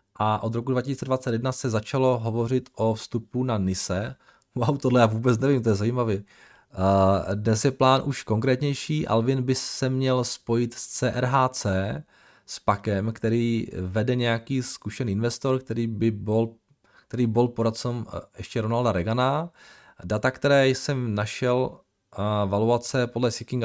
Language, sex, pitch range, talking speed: Czech, male, 105-125 Hz, 135 wpm